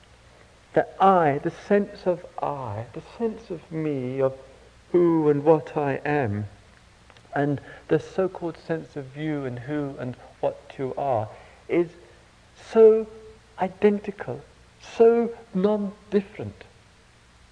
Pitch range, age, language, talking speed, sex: 135-195 Hz, 60-79, English, 115 wpm, male